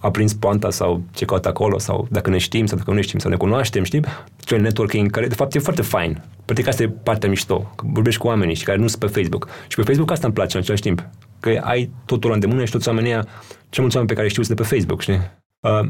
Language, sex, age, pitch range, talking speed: Romanian, male, 20-39, 95-115 Hz, 280 wpm